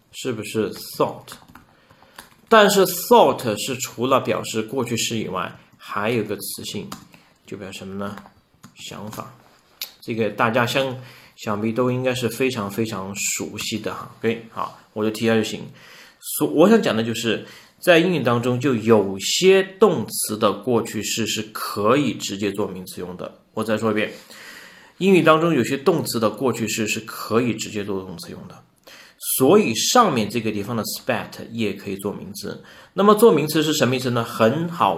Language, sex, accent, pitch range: Chinese, male, native, 105-155 Hz